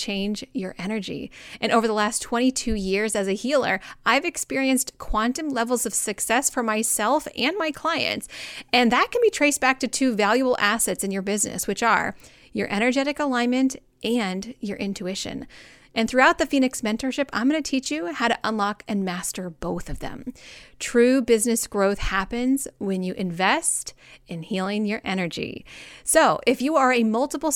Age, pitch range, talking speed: 30-49, 200-260 Hz, 170 wpm